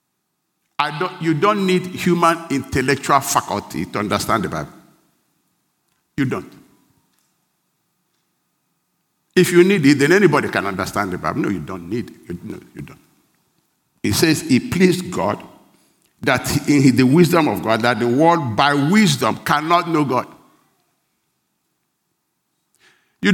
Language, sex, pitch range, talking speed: English, male, 135-180 Hz, 135 wpm